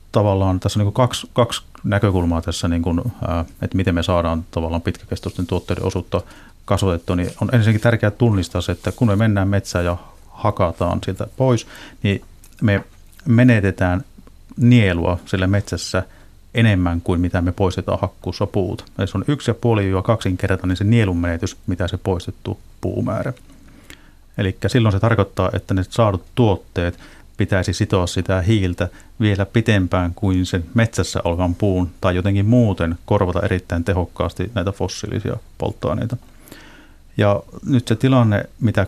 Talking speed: 150 wpm